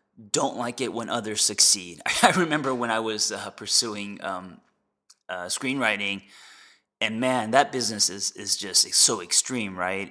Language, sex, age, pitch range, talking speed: English, male, 20-39, 100-120 Hz, 160 wpm